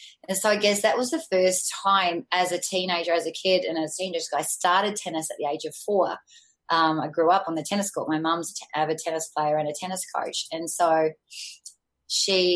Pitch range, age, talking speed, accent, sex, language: 160-200 Hz, 20-39, 230 wpm, Australian, female, English